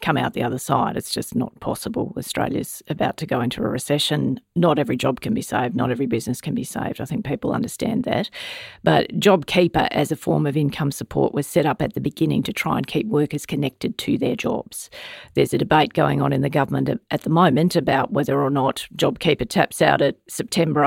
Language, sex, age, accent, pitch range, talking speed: English, female, 40-59, Australian, 145-175 Hz, 220 wpm